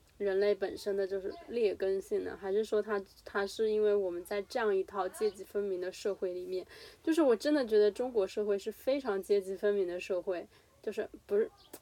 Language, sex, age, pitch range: Chinese, female, 20-39, 195-225 Hz